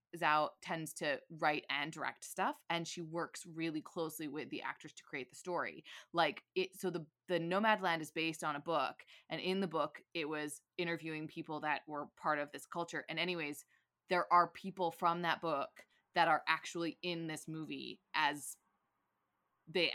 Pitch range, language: 155-190 Hz, English